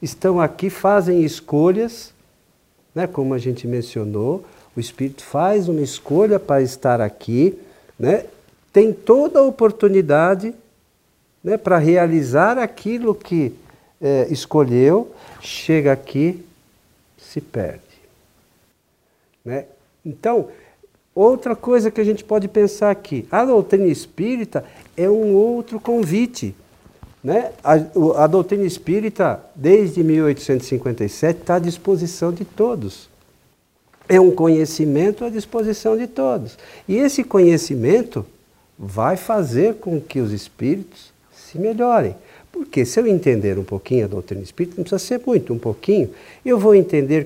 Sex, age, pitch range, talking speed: male, 50-69, 130-205 Hz, 125 wpm